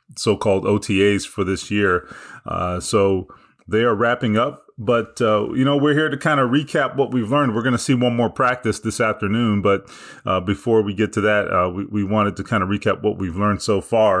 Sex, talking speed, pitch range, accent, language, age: male, 225 wpm, 105-145 Hz, American, English, 30-49